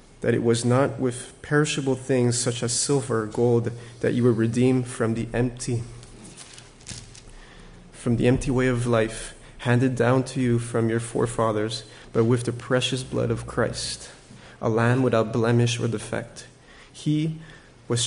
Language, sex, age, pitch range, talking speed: English, male, 20-39, 115-130 Hz, 155 wpm